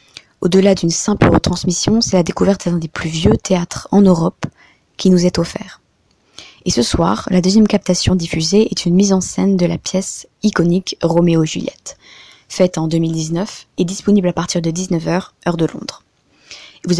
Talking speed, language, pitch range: 175 wpm, French, 170-195 Hz